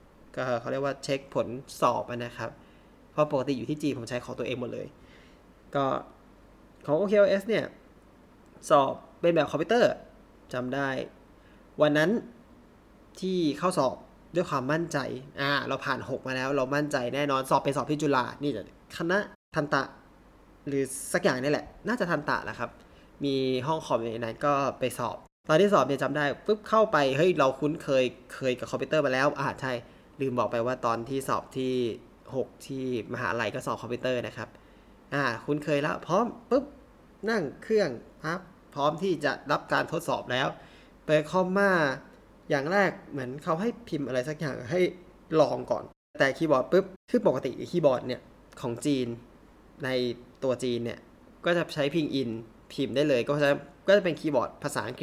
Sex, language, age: male, Thai, 20-39